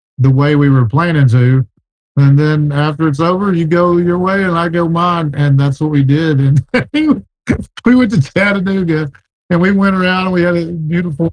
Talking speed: 200 wpm